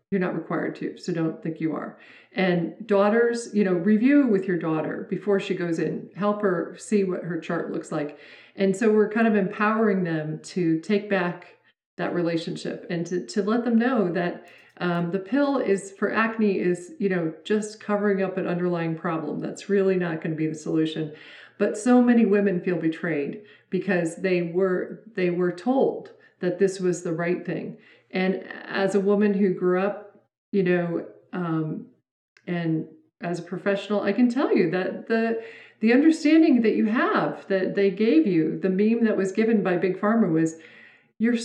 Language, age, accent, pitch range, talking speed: English, 40-59, American, 175-225 Hz, 185 wpm